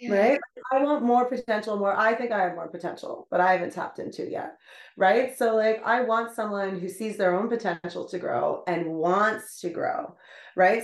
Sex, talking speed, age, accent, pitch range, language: female, 205 wpm, 30-49, American, 170-220 Hz, English